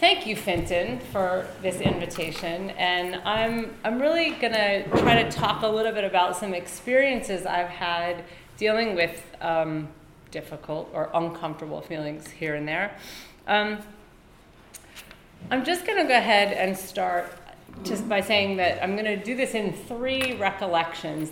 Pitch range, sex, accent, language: 175-225 Hz, female, American, English